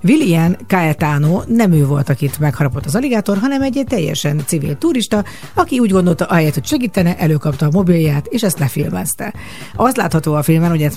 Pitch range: 145-195 Hz